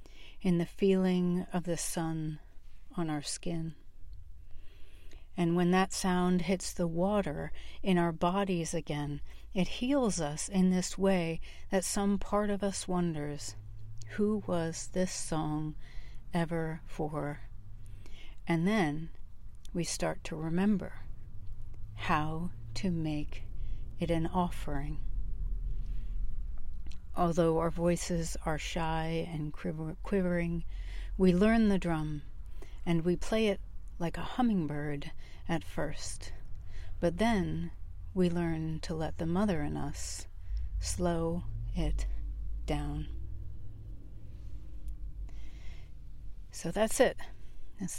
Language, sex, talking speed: English, female, 110 wpm